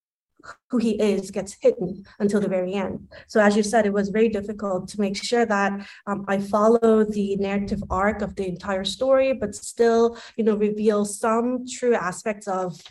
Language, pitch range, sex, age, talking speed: English, 195-225 Hz, female, 30-49, 185 wpm